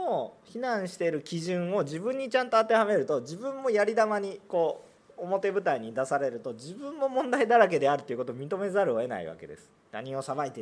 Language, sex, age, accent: Japanese, male, 40-59, native